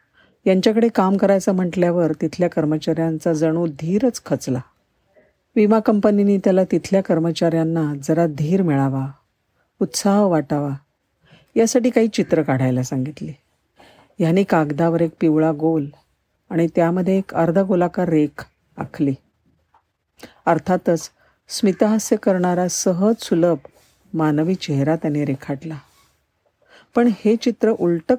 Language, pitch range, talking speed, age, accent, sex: Marathi, 150-195 Hz, 105 wpm, 50-69, native, female